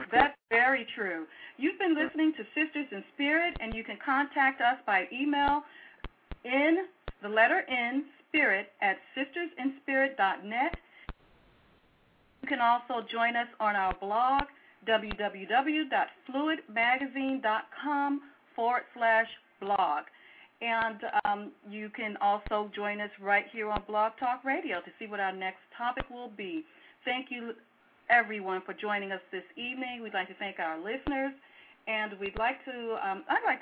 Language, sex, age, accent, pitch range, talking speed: English, female, 40-59, American, 205-275 Hz, 140 wpm